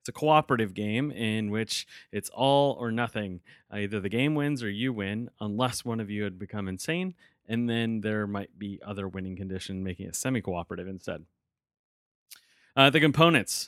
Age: 30-49